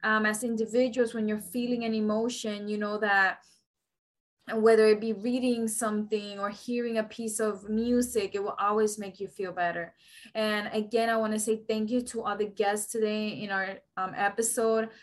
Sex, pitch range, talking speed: female, 215-240 Hz, 185 wpm